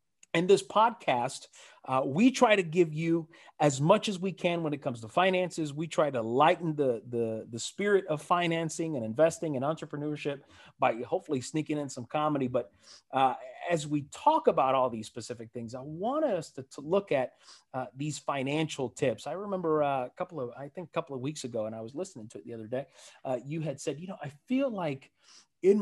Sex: male